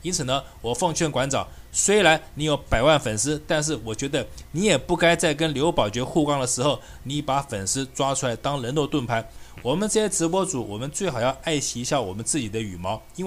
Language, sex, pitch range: Chinese, male, 130-165 Hz